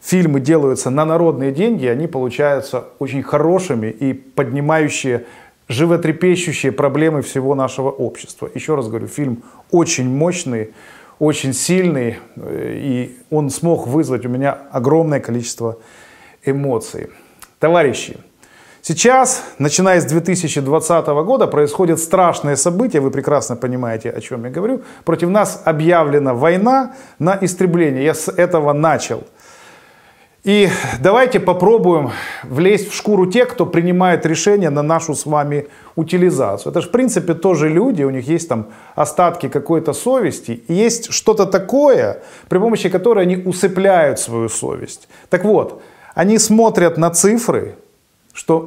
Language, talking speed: Russian, 130 wpm